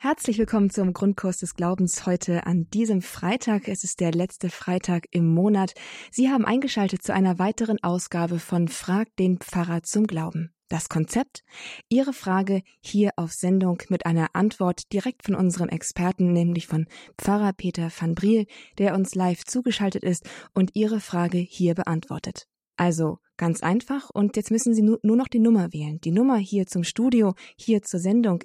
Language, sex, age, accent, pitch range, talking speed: German, female, 20-39, German, 175-215 Hz, 170 wpm